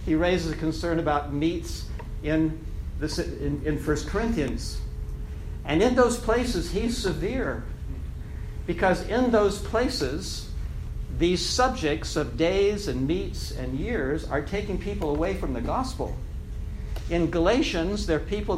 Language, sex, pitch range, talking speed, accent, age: English, male, 145-185 Hz, 130 wpm, American, 60-79